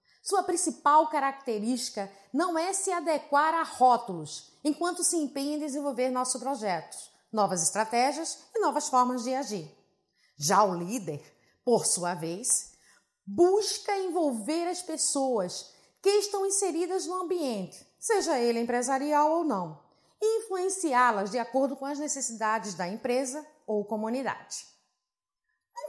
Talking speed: 125 wpm